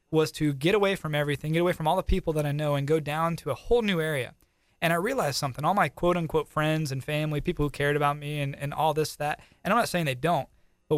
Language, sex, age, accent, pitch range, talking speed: English, male, 20-39, American, 135-160 Hz, 280 wpm